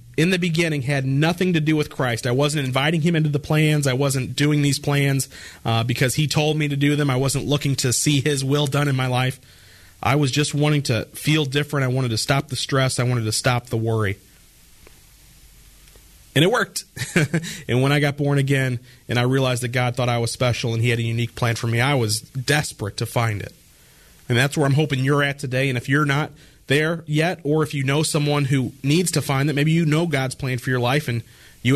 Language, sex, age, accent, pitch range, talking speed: English, male, 40-59, American, 125-145 Hz, 235 wpm